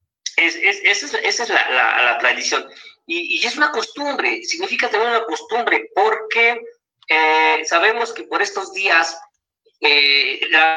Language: Spanish